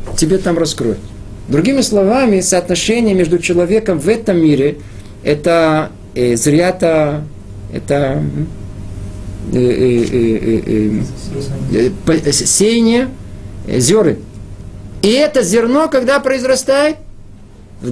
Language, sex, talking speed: Russian, male, 100 wpm